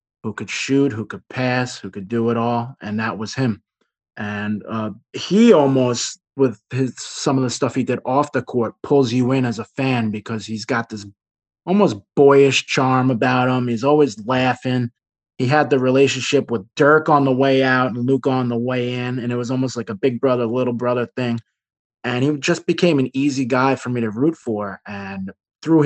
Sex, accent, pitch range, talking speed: male, American, 110-135 Hz, 205 wpm